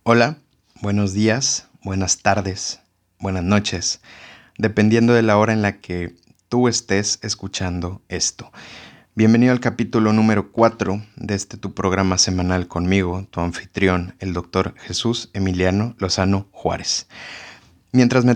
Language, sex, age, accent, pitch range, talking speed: Spanish, male, 30-49, Mexican, 95-110 Hz, 125 wpm